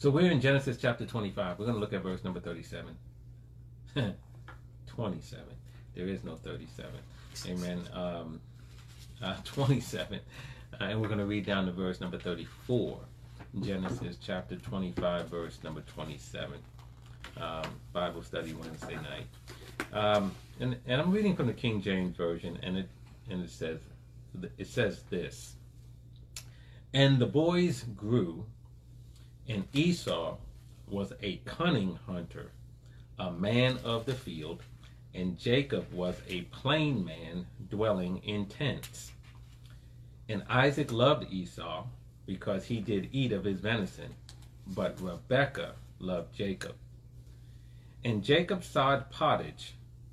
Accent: American